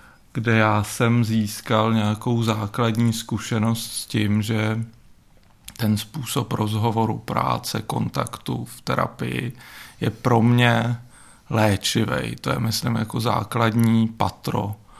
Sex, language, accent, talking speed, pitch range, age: male, Czech, native, 110 wpm, 110-115 Hz, 40-59